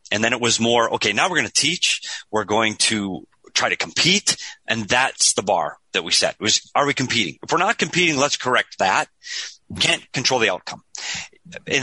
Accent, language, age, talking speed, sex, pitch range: American, English, 30-49, 205 wpm, male, 110-145 Hz